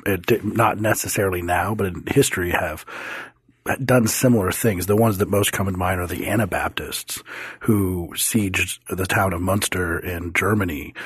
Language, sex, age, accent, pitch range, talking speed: English, male, 40-59, American, 90-105 Hz, 150 wpm